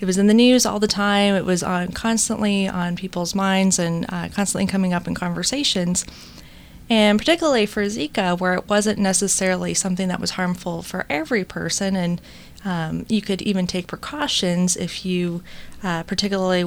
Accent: American